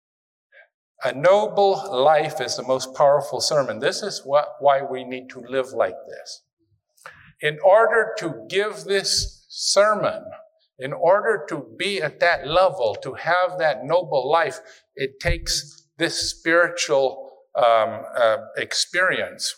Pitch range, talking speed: 130-195 Hz, 130 wpm